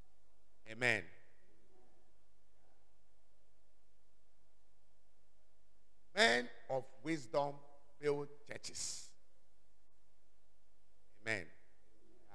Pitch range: 130-175 Hz